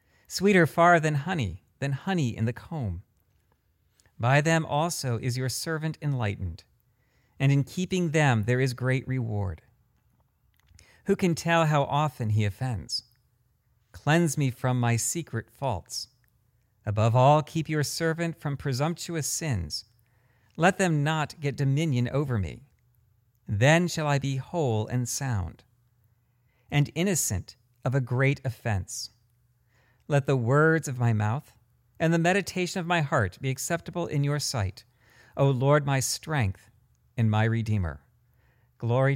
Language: English